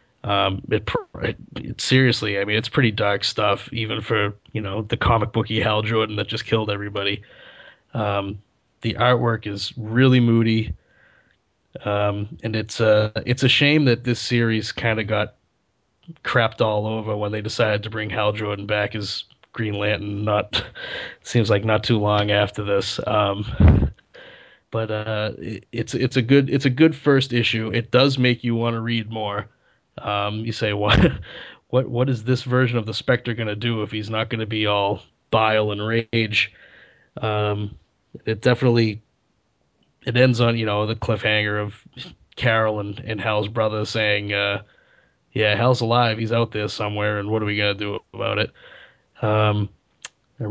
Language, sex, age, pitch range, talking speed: English, male, 30-49, 105-120 Hz, 170 wpm